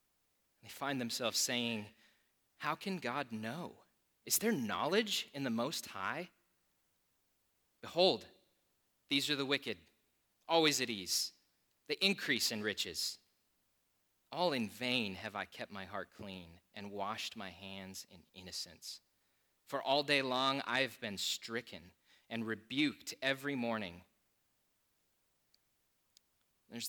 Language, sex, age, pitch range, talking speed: English, male, 20-39, 105-145 Hz, 125 wpm